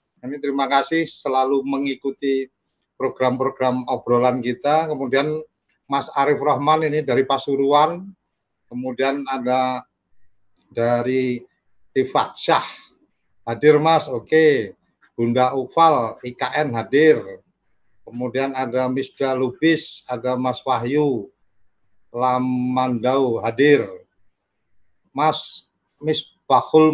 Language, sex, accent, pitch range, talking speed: Indonesian, male, native, 125-150 Hz, 85 wpm